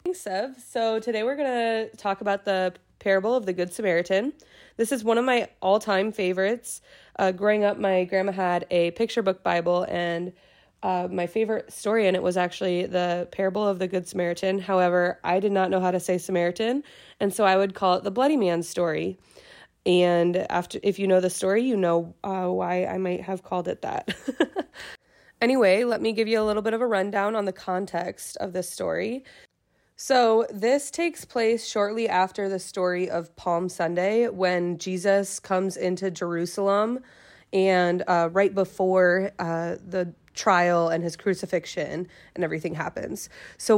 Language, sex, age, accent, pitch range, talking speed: English, female, 20-39, American, 180-215 Hz, 180 wpm